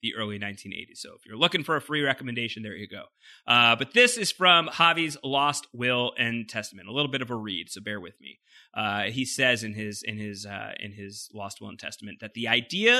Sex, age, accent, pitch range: male, 30-49, American, 125-180 Hz